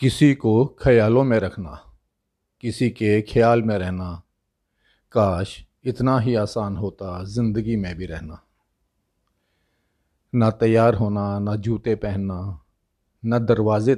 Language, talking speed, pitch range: Hindi, 115 wpm, 100-115 Hz